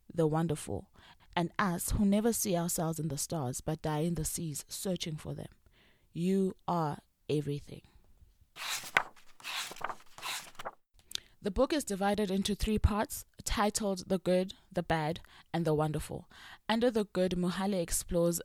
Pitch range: 155-190 Hz